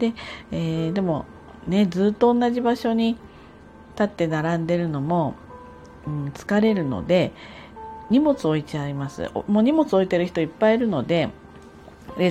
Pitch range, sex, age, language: 145-220 Hz, female, 40-59, Japanese